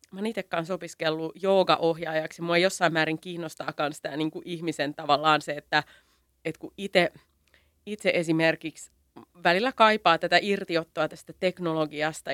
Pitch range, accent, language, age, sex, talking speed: 155-180 Hz, native, Finnish, 30-49, female, 135 wpm